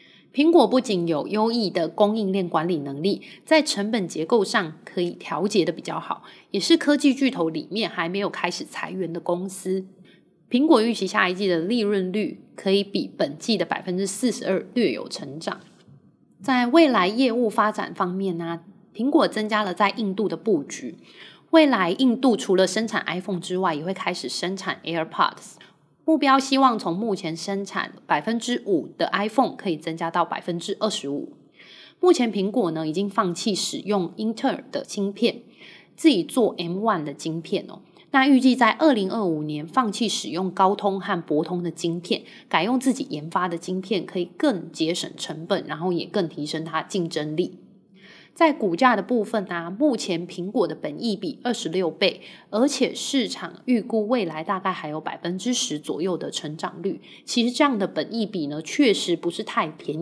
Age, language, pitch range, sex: 20-39, Chinese, 175-235 Hz, female